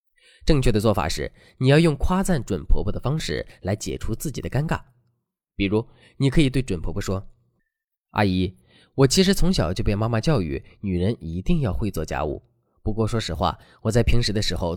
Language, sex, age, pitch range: Chinese, male, 20-39, 95-150 Hz